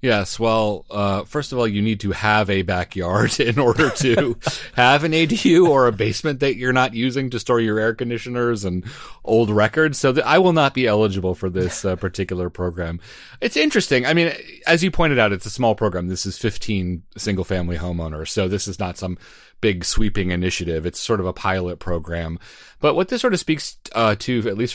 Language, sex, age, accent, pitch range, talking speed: English, male, 30-49, American, 90-120 Hz, 210 wpm